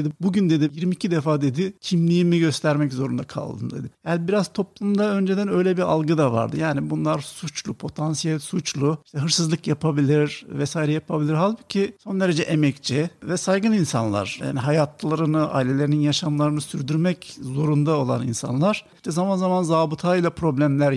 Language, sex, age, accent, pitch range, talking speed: Turkish, male, 50-69, native, 145-185 Hz, 145 wpm